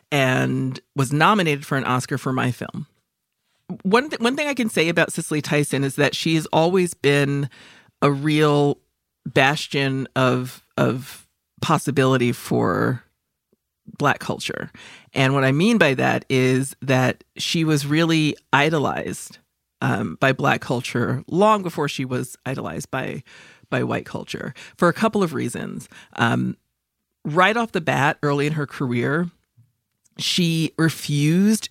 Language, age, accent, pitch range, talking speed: English, 40-59, American, 130-165 Hz, 140 wpm